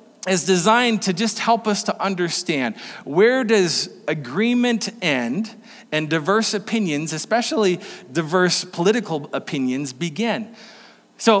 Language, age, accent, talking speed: English, 40-59, American, 110 wpm